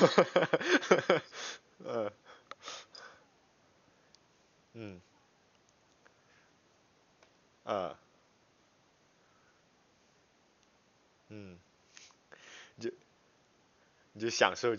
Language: Chinese